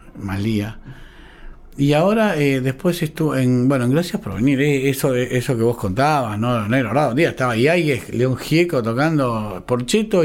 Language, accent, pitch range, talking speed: Spanish, Argentinian, 125-175 Hz, 170 wpm